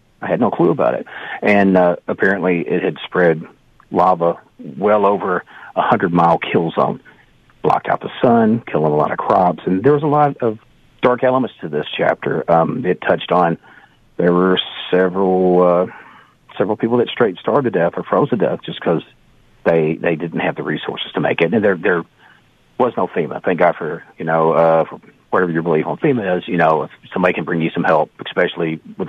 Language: English